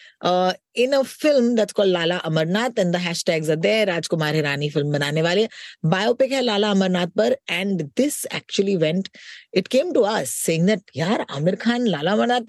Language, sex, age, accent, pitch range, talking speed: Hindi, female, 20-39, native, 175-230 Hz, 155 wpm